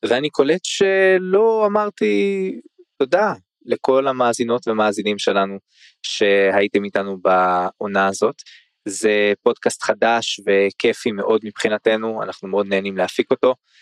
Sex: male